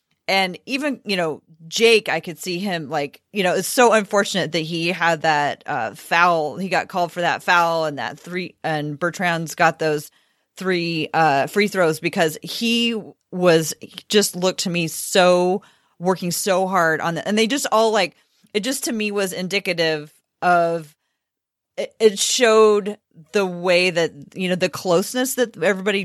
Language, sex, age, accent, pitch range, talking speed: English, female, 30-49, American, 160-195 Hz, 175 wpm